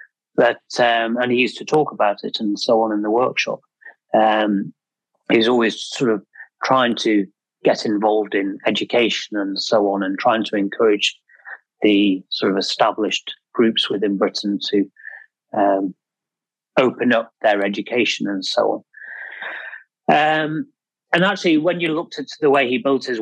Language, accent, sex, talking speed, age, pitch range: English, British, male, 155 wpm, 30-49, 105-130 Hz